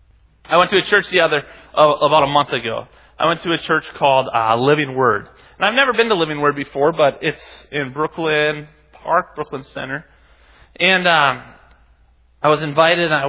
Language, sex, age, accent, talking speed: English, male, 30-49, American, 195 wpm